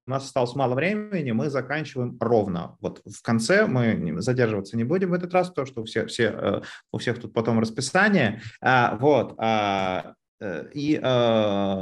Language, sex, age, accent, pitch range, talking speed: Russian, male, 30-49, native, 120-165 Hz, 135 wpm